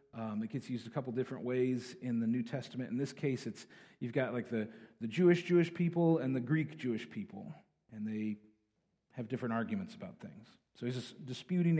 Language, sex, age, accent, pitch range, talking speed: English, male, 40-59, American, 125-160 Hz, 205 wpm